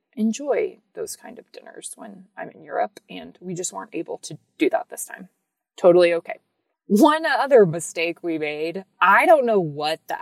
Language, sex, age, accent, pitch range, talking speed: English, female, 20-39, American, 165-275 Hz, 180 wpm